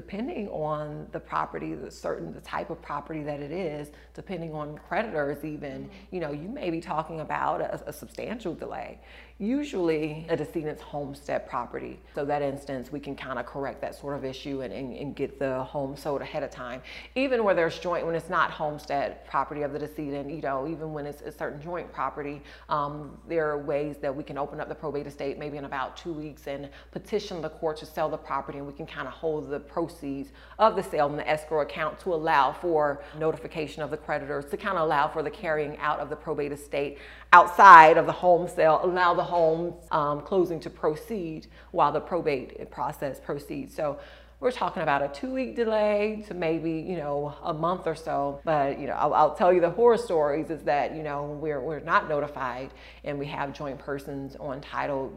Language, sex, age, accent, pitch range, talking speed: English, female, 30-49, American, 145-165 Hz, 210 wpm